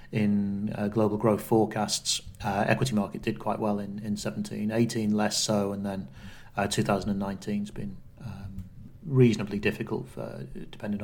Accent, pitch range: British, 105-115 Hz